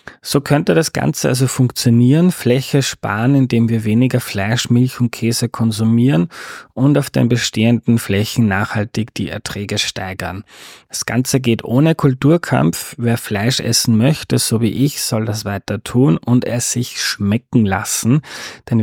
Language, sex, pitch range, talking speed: German, male, 110-130 Hz, 150 wpm